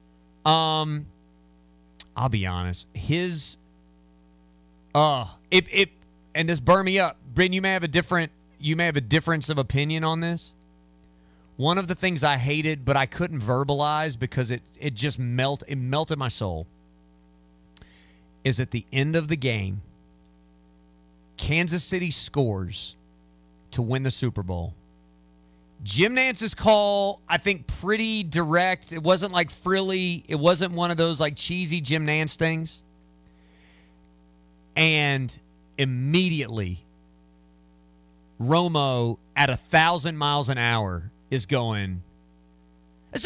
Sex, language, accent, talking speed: male, English, American, 130 wpm